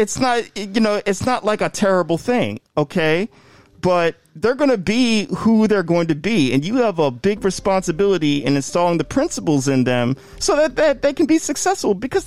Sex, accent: male, American